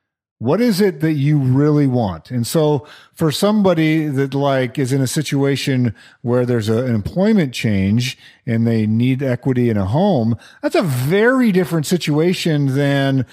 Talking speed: 160 wpm